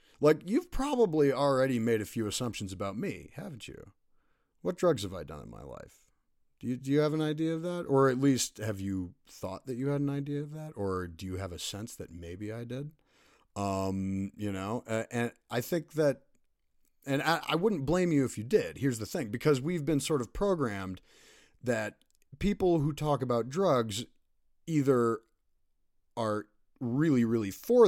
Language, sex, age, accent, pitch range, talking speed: English, male, 40-59, American, 100-140 Hz, 190 wpm